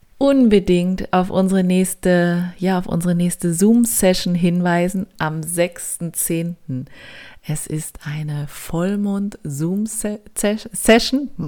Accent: German